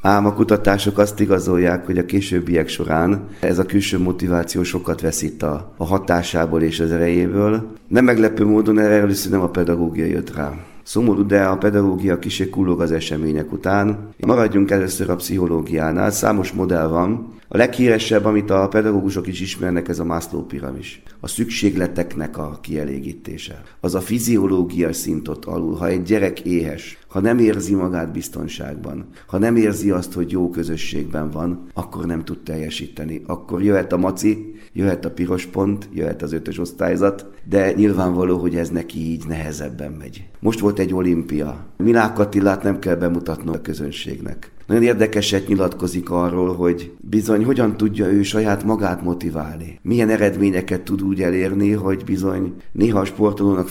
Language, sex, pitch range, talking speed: Hungarian, male, 85-105 Hz, 155 wpm